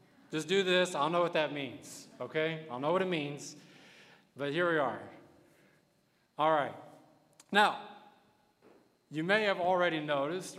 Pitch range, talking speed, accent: 150-180 Hz, 145 wpm, American